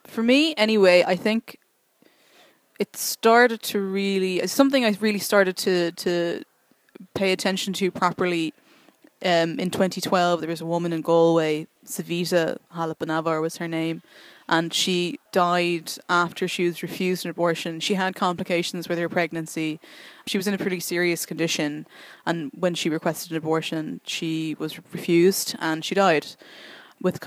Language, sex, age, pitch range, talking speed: English, female, 20-39, 170-205 Hz, 150 wpm